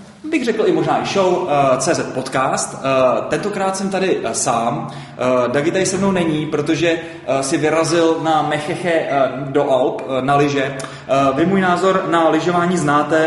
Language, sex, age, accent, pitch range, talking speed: Czech, male, 20-39, native, 145-170 Hz, 170 wpm